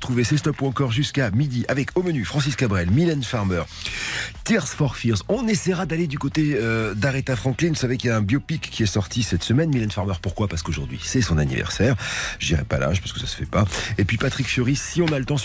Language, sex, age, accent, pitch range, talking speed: French, male, 40-59, French, 90-130 Hz, 250 wpm